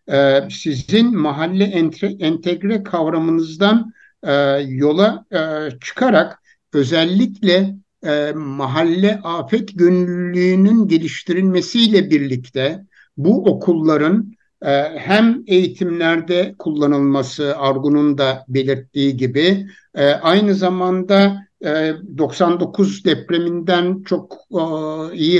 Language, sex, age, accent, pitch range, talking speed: Turkish, male, 60-79, native, 145-195 Hz, 65 wpm